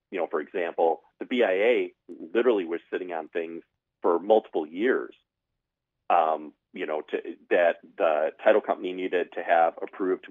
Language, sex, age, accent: English, male, 40-59, American